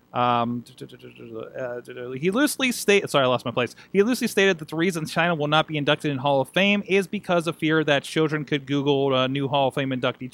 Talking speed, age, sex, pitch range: 220 wpm, 30-49, male, 130-185 Hz